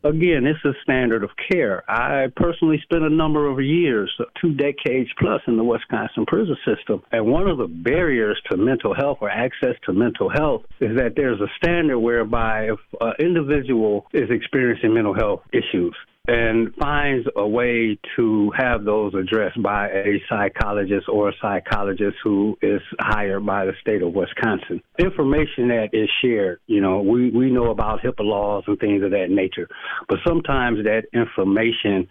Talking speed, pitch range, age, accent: 170 wpm, 105-130 Hz, 60-79, American